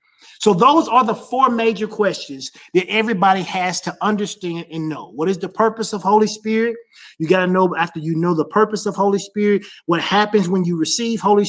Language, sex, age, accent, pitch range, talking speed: English, male, 30-49, American, 180-230 Hz, 205 wpm